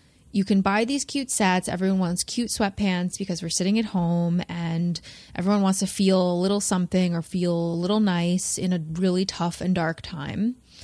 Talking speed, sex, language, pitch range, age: 195 wpm, female, English, 165-200 Hz, 20-39